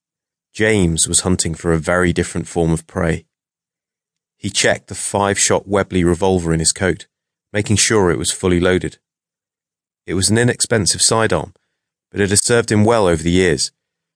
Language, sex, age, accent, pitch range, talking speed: English, male, 30-49, British, 85-100 Hz, 165 wpm